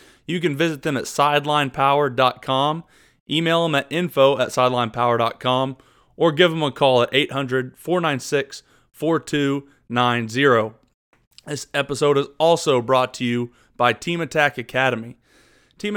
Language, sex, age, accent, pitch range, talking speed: English, male, 30-49, American, 120-145 Hz, 115 wpm